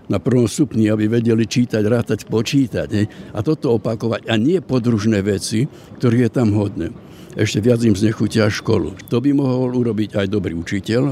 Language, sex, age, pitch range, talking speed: Slovak, male, 70-89, 105-130 Hz, 175 wpm